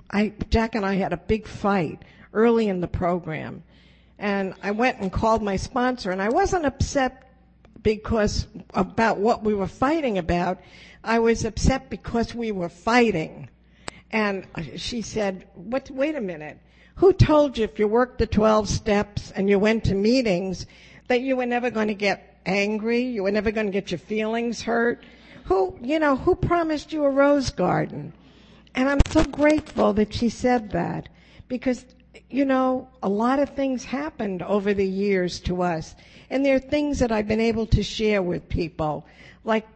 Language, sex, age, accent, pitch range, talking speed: English, female, 60-79, American, 195-245 Hz, 175 wpm